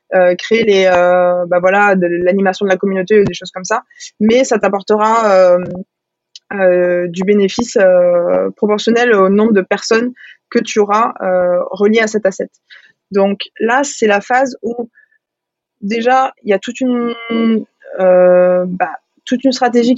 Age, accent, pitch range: 20-39, French, 190-235 Hz